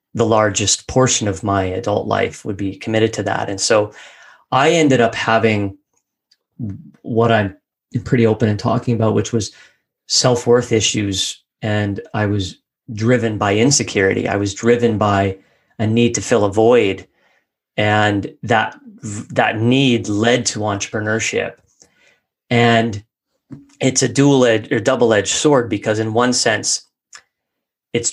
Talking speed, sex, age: 140 wpm, male, 30-49